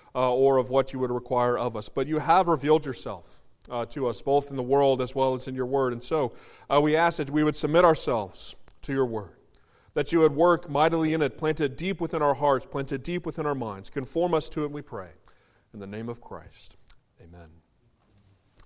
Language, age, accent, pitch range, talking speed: English, 40-59, American, 140-190 Hz, 230 wpm